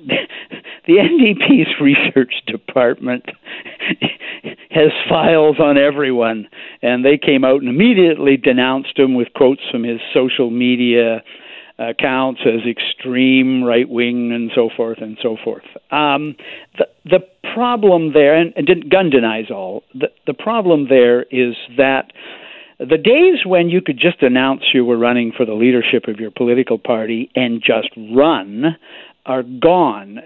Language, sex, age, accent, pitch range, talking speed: English, male, 60-79, American, 125-170 Hz, 145 wpm